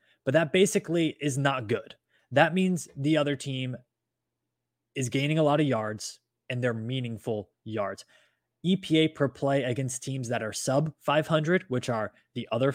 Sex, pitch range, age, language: male, 115-145 Hz, 20-39, English